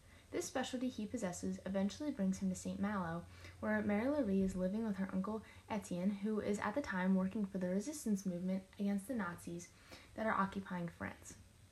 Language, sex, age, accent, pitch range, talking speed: English, female, 10-29, American, 185-235 Hz, 185 wpm